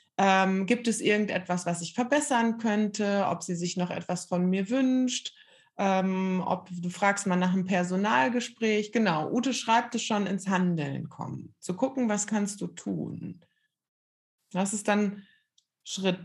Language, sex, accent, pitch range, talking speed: German, female, German, 190-240 Hz, 155 wpm